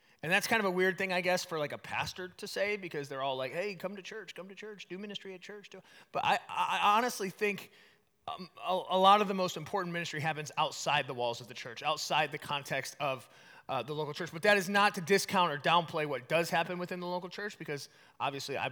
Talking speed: 245 wpm